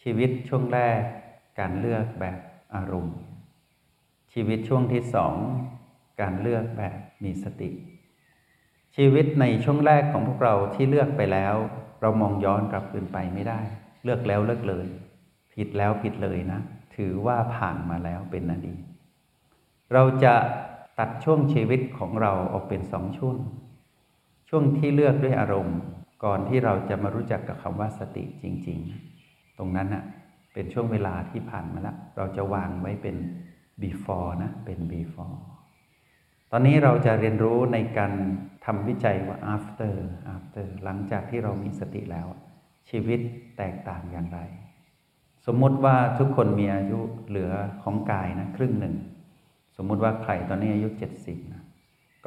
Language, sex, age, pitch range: Thai, male, 60-79, 95-120 Hz